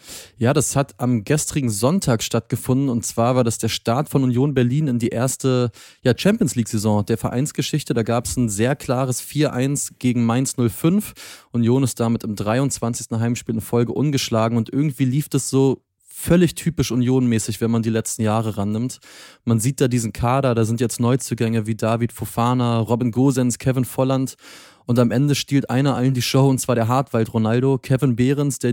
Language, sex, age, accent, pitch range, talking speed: German, male, 30-49, German, 115-135 Hz, 180 wpm